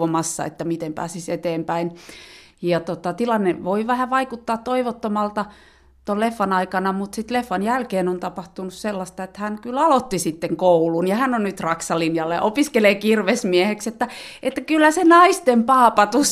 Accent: native